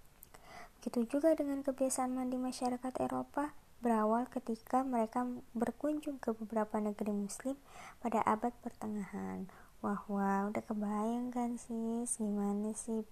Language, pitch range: Indonesian, 205-240 Hz